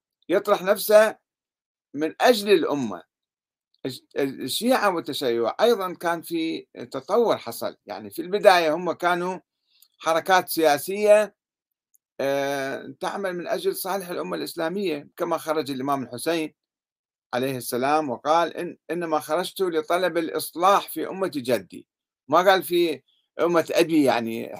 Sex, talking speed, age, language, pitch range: male, 110 wpm, 50-69, Arabic, 145-210 Hz